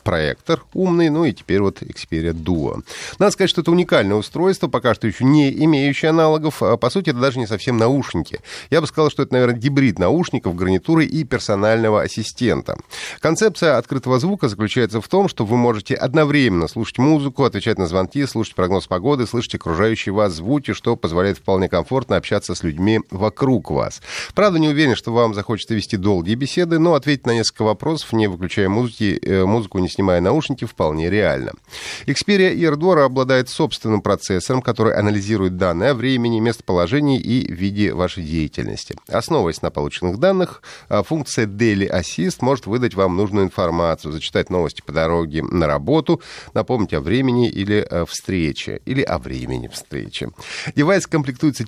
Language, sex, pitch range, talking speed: Russian, male, 95-145 Hz, 160 wpm